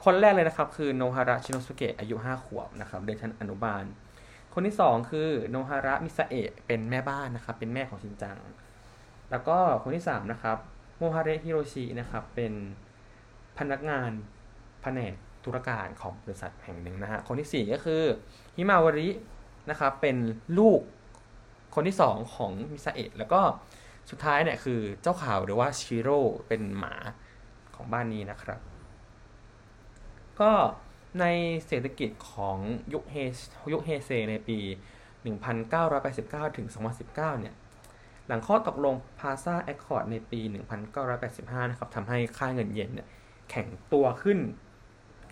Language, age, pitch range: Thai, 20-39, 110-140 Hz